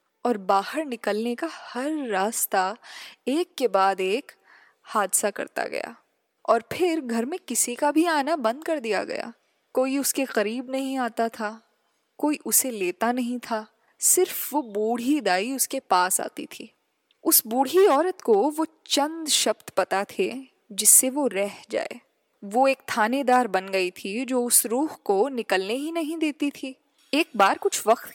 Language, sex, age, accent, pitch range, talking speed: Hindi, female, 10-29, native, 205-305 Hz, 160 wpm